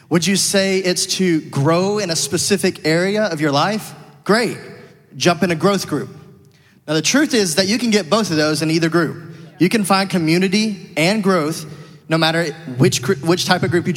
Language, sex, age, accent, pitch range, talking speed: English, male, 30-49, American, 145-185 Hz, 200 wpm